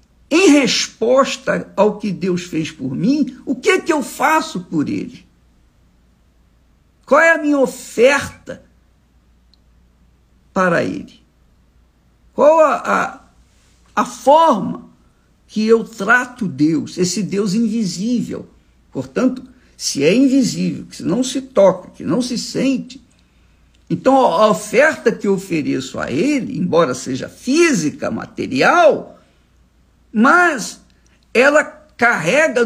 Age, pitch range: 60-79, 160-270 Hz